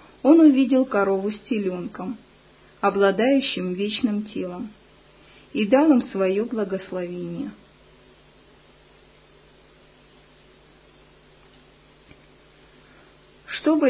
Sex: female